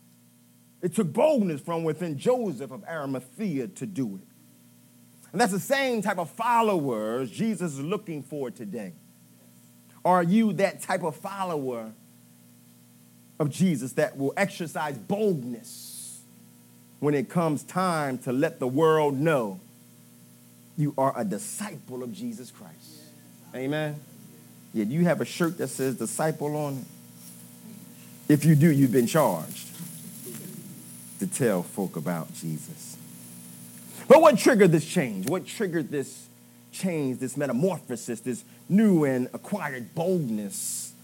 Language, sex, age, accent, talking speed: English, male, 30-49, American, 135 wpm